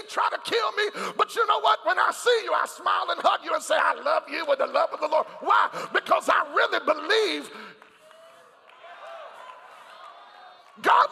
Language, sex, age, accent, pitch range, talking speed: English, male, 50-69, American, 290-365 Hz, 185 wpm